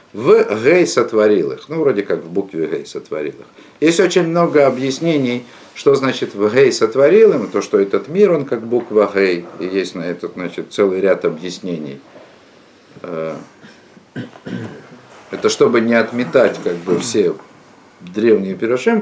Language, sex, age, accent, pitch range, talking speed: Russian, male, 50-69, native, 105-170 Hz, 150 wpm